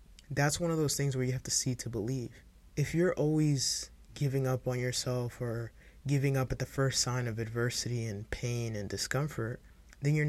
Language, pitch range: English, 105-130 Hz